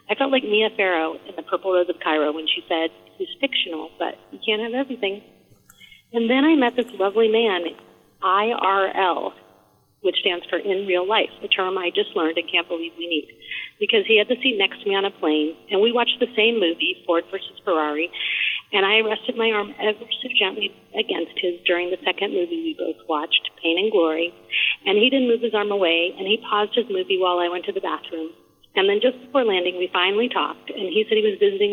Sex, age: female, 40-59